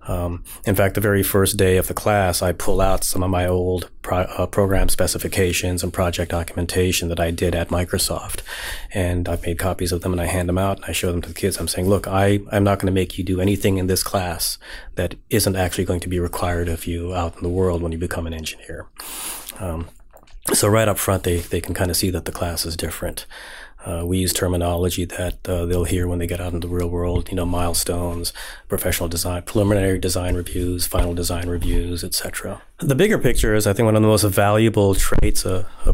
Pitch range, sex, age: 90-100 Hz, male, 30-49